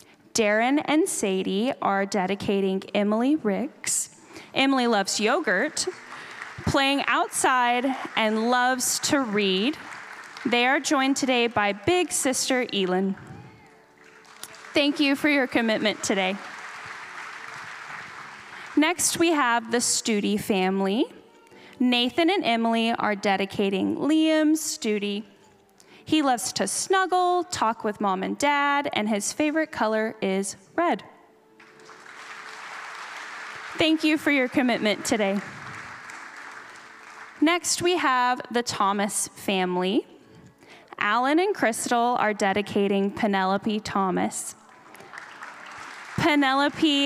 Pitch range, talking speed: 205-285 Hz, 100 wpm